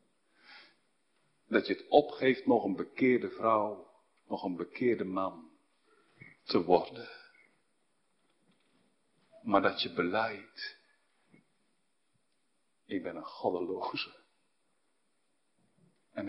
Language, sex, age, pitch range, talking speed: Dutch, male, 50-69, 205-285 Hz, 85 wpm